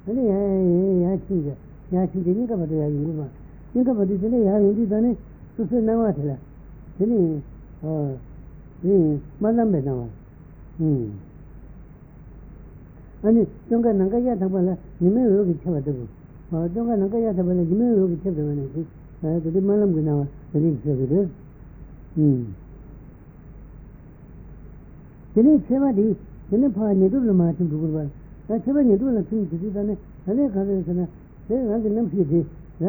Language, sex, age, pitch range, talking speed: Italian, female, 60-79, 155-210 Hz, 95 wpm